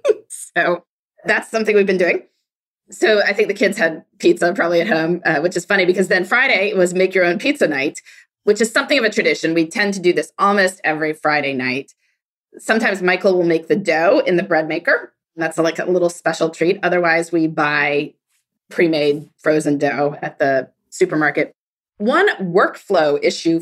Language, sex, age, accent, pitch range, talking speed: English, female, 20-39, American, 165-225 Hz, 185 wpm